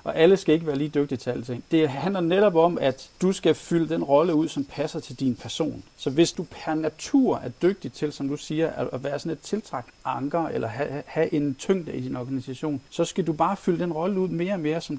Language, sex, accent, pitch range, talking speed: Danish, male, native, 130-165 Hz, 245 wpm